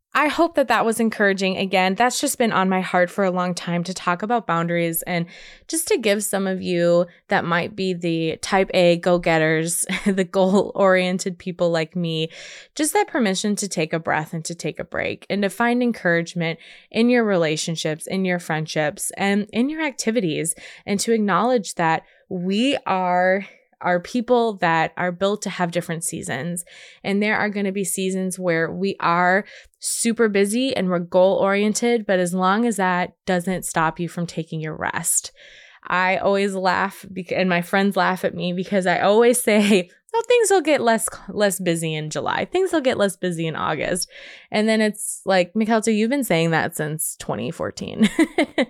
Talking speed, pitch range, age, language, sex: 180 wpm, 175-220 Hz, 20-39, English, female